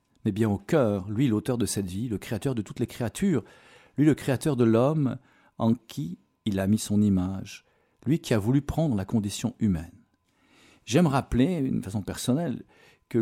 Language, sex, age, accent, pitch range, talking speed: French, male, 50-69, French, 100-130 Hz, 185 wpm